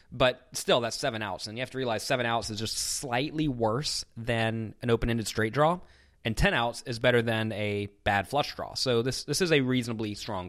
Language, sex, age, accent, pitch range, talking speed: English, male, 20-39, American, 100-145 Hz, 215 wpm